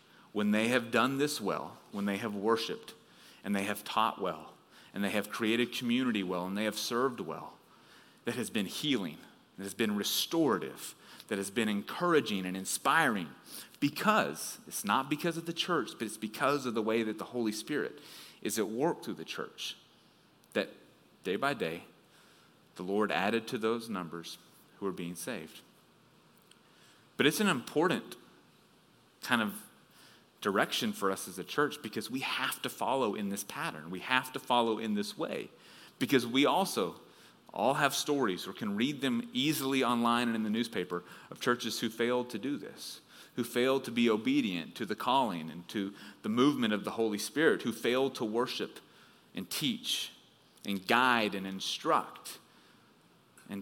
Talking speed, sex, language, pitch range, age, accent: 170 wpm, male, English, 100-130 Hz, 30-49, American